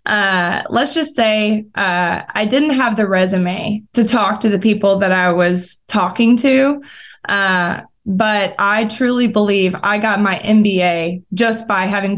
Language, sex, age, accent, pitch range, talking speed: English, female, 20-39, American, 190-230 Hz, 160 wpm